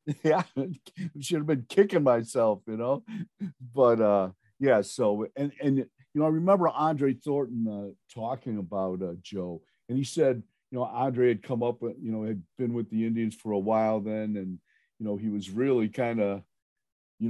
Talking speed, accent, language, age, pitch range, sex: 195 wpm, American, English, 50-69, 105-130 Hz, male